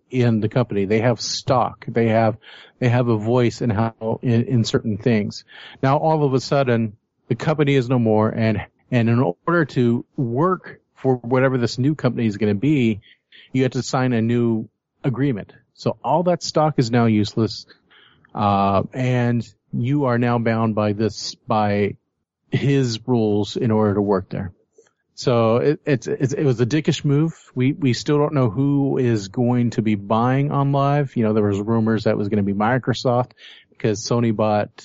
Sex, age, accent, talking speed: male, 40-59, American, 190 wpm